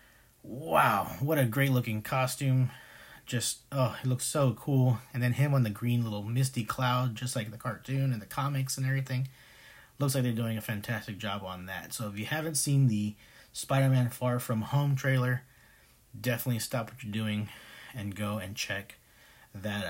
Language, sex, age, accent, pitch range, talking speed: English, male, 30-49, American, 110-130 Hz, 180 wpm